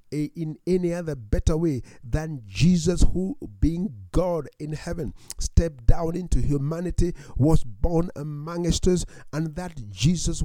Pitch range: 150-180 Hz